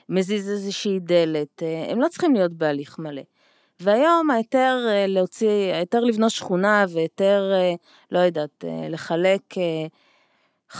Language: Hebrew